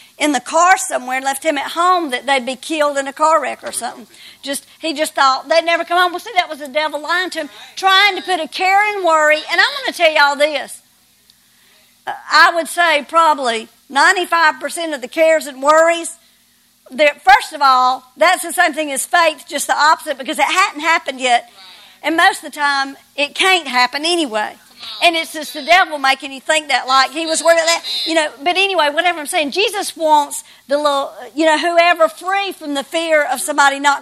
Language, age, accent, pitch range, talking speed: English, 50-69, American, 270-330 Hz, 215 wpm